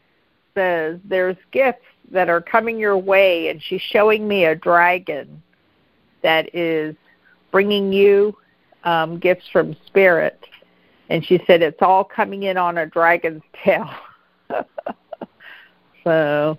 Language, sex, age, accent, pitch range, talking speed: English, female, 50-69, American, 170-210 Hz, 125 wpm